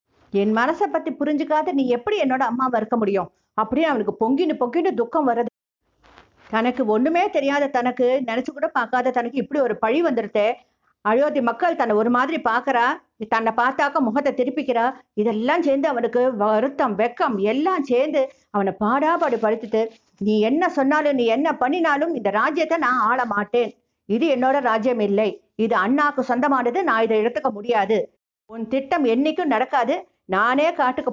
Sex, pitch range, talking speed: female, 225-295 Hz, 130 wpm